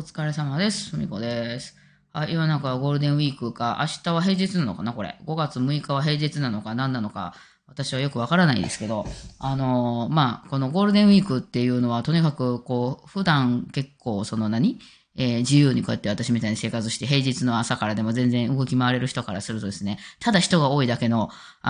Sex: female